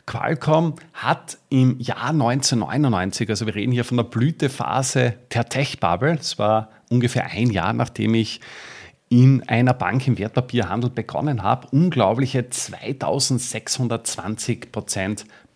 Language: German